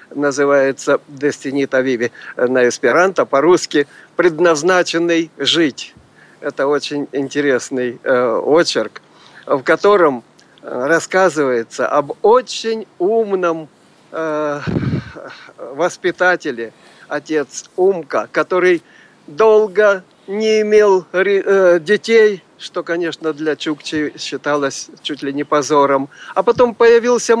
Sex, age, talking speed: male, 60-79, 90 wpm